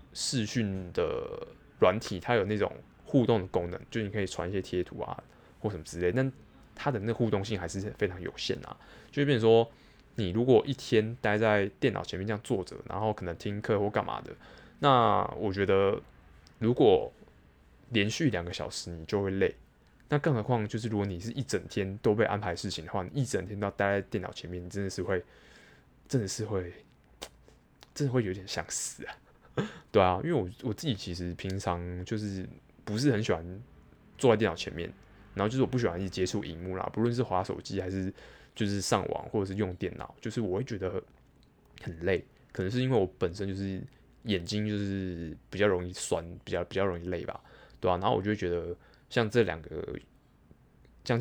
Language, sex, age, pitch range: Chinese, male, 20-39, 95-120 Hz